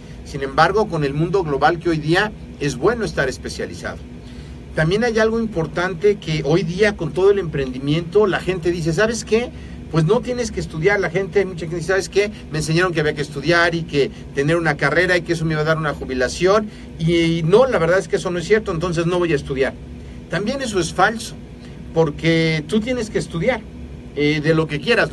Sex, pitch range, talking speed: male, 145-185 Hz, 215 wpm